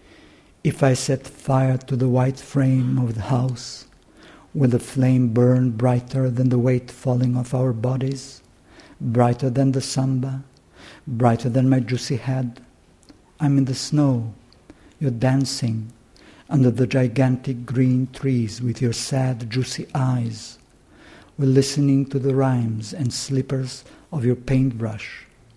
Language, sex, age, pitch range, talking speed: English, male, 50-69, 120-135 Hz, 135 wpm